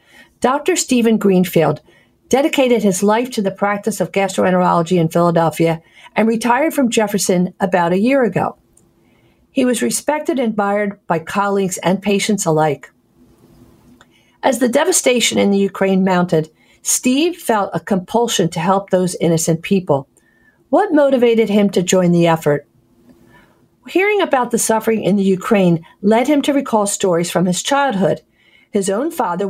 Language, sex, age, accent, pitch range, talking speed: English, female, 50-69, American, 180-240 Hz, 145 wpm